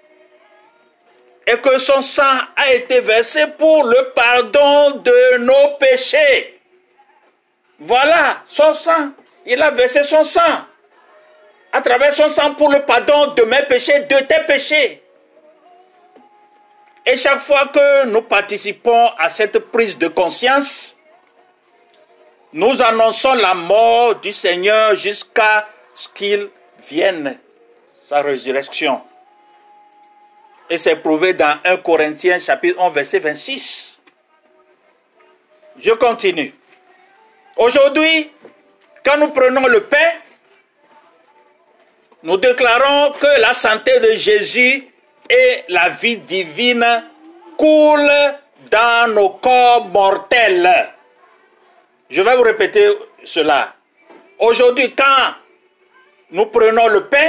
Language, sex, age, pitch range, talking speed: French, male, 50-69, 235-365 Hz, 105 wpm